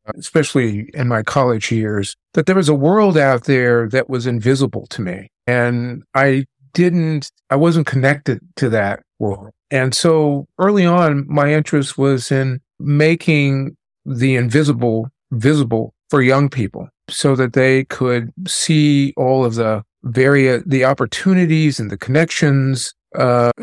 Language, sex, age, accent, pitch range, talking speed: English, male, 50-69, American, 125-150 Hz, 140 wpm